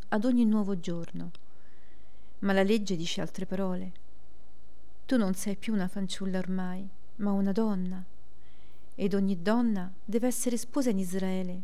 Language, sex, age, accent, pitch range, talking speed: Italian, female, 40-59, native, 185-215 Hz, 145 wpm